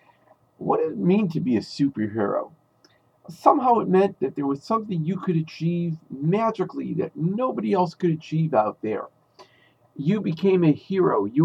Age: 50-69